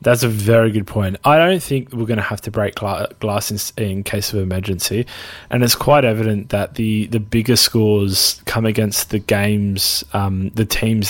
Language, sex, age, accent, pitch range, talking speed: English, male, 20-39, Australian, 100-120 Hz, 190 wpm